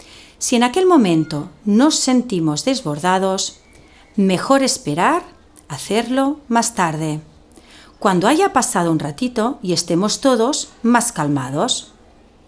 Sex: female